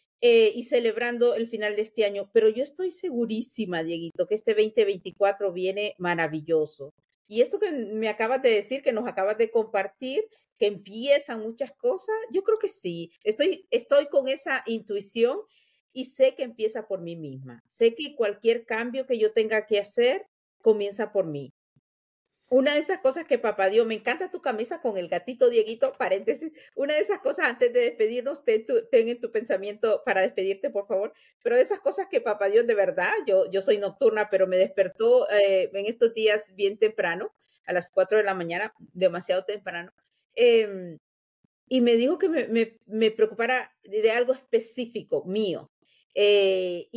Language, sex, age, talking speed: Spanish, female, 50-69, 175 wpm